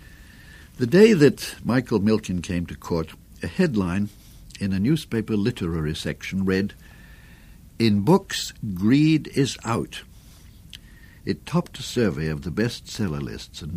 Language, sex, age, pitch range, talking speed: English, male, 60-79, 85-110 Hz, 130 wpm